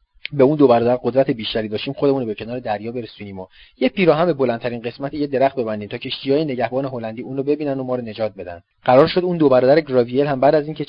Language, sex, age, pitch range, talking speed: Persian, male, 30-49, 115-155 Hz, 240 wpm